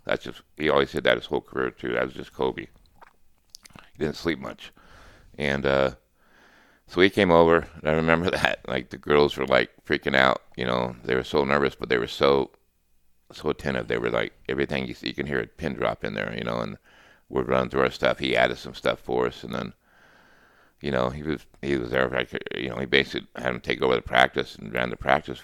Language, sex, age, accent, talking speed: English, male, 60-79, American, 240 wpm